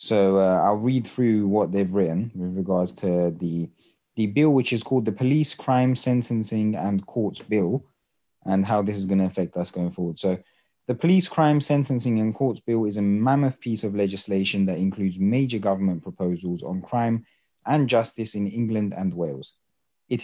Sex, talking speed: male, 185 wpm